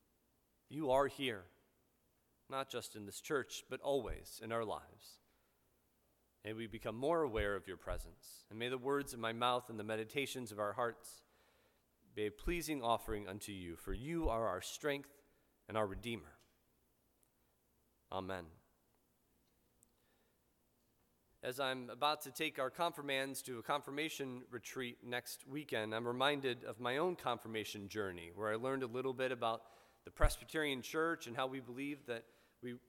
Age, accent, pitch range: 30-49, American, 115-150 Hz